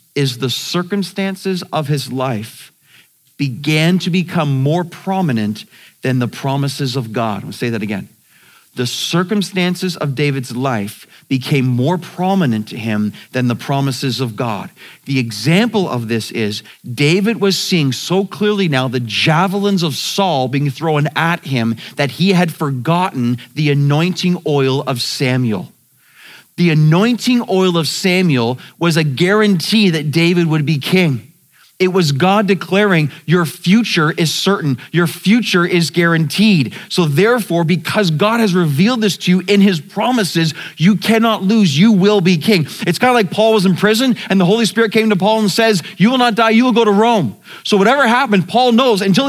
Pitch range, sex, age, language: 140-210 Hz, male, 40-59, English